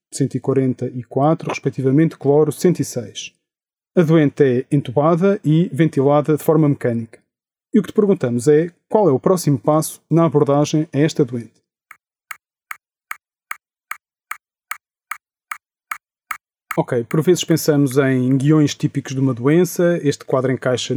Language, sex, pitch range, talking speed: Portuguese, male, 130-155 Hz, 125 wpm